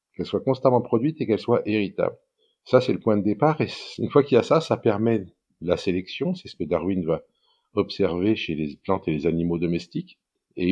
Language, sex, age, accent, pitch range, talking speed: French, male, 50-69, French, 85-110 Hz, 220 wpm